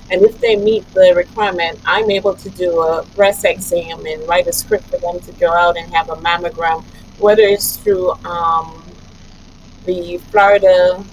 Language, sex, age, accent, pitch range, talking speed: English, female, 30-49, American, 170-210 Hz, 175 wpm